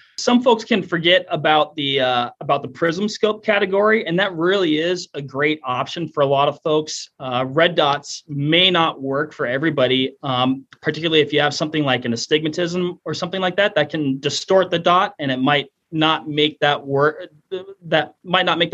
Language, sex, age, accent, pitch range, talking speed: English, male, 30-49, American, 130-170 Hz, 195 wpm